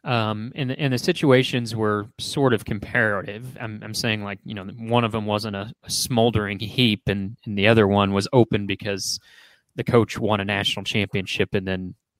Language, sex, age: English, male, 30-49